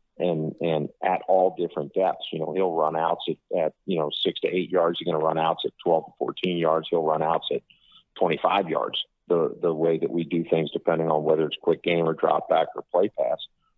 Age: 40-59